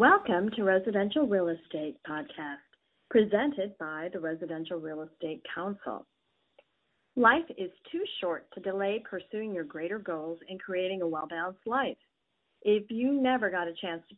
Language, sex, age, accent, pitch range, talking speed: English, female, 40-59, American, 170-225 Hz, 150 wpm